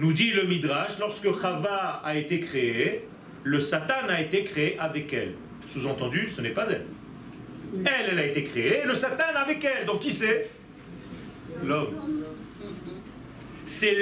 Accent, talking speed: French, 150 wpm